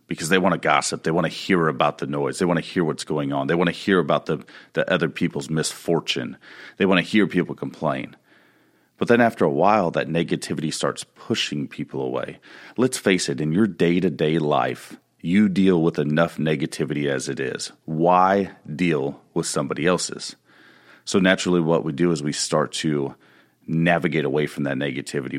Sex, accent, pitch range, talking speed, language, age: male, American, 75-90 Hz, 195 wpm, English, 40-59